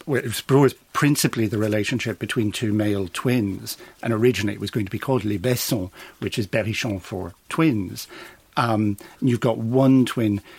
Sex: male